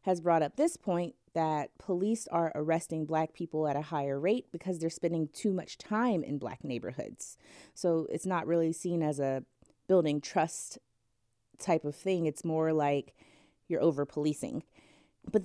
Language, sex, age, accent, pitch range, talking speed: English, female, 30-49, American, 145-175 Hz, 165 wpm